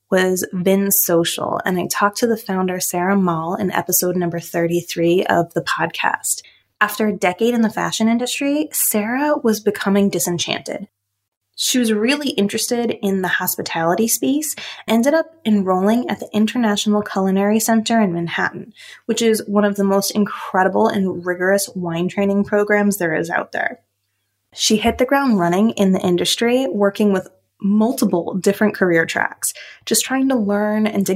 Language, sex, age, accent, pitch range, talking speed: English, female, 20-39, American, 185-230 Hz, 160 wpm